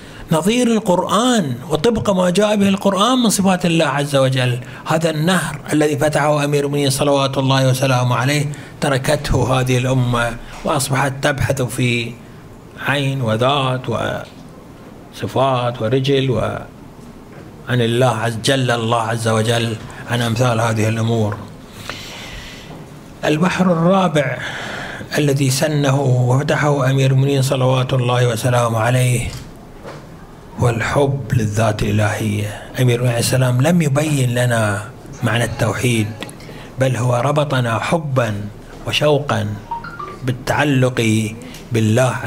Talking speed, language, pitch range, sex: 100 wpm, Arabic, 120-145 Hz, male